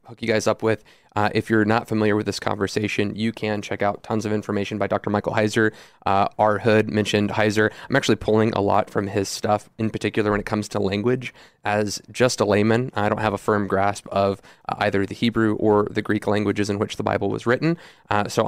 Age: 20-39